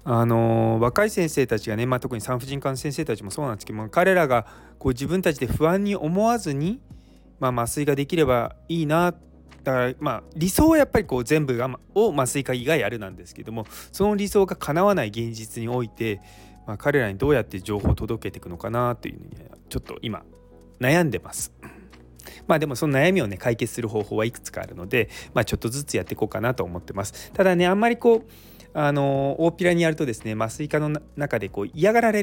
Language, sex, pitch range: Japanese, male, 110-165 Hz